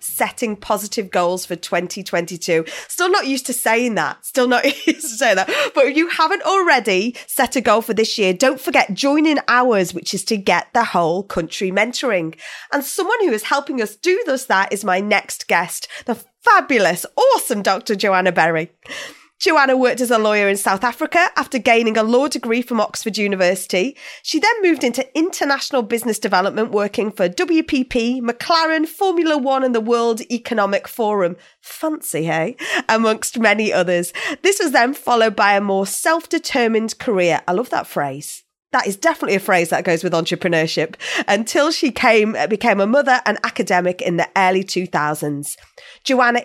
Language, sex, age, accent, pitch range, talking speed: English, female, 30-49, British, 185-265 Hz, 170 wpm